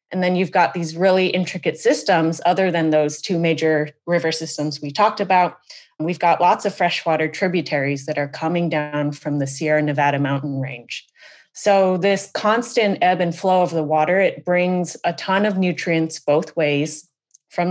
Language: English